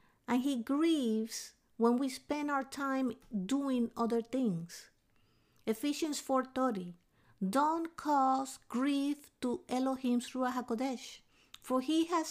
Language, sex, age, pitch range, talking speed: English, female, 50-69, 220-290 Hz, 110 wpm